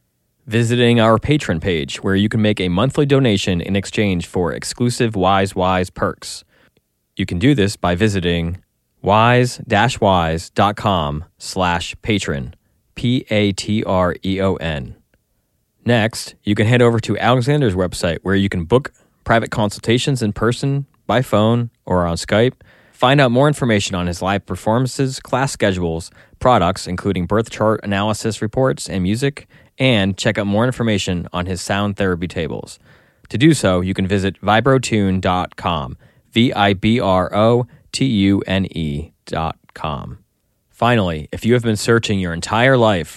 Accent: American